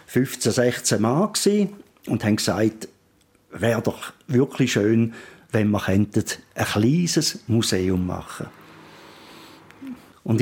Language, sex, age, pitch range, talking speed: German, male, 50-69, 105-135 Hz, 110 wpm